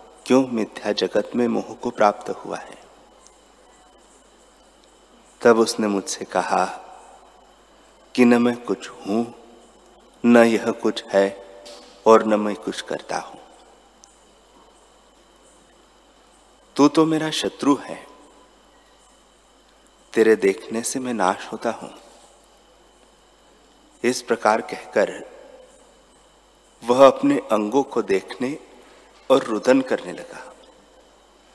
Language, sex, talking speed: Hindi, male, 100 wpm